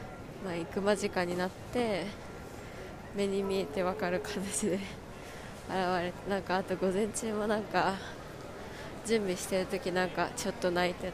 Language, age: Japanese, 20-39